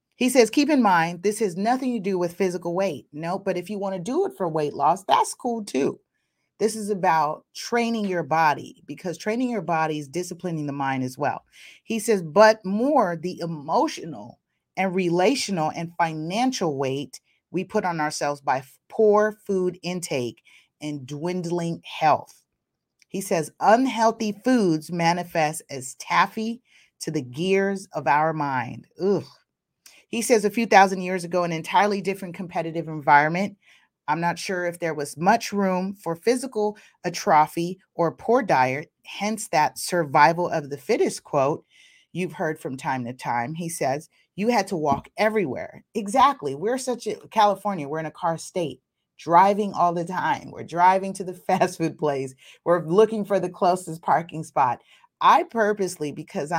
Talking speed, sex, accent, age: 165 wpm, female, American, 30-49